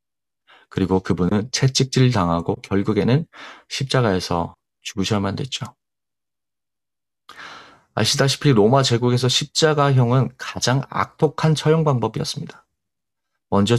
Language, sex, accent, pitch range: Korean, male, native, 105-140 Hz